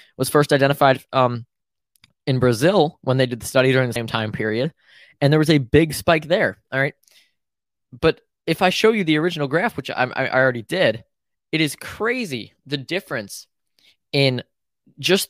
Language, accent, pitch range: English, American, 120-150 Hz